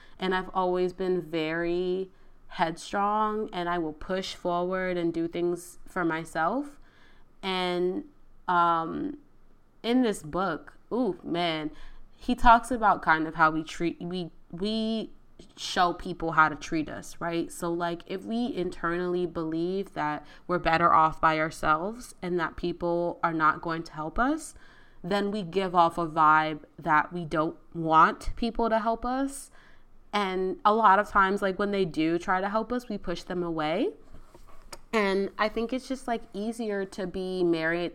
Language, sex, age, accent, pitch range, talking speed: English, female, 20-39, American, 160-195 Hz, 160 wpm